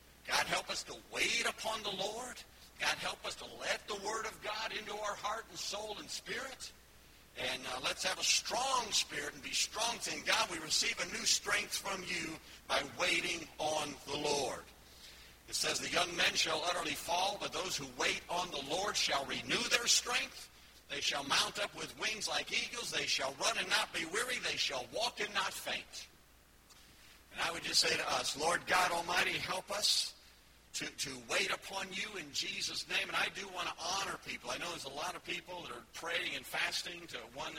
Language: English